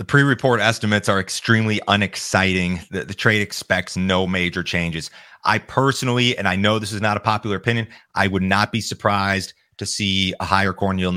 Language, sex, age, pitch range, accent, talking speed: English, male, 30-49, 90-105 Hz, American, 190 wpm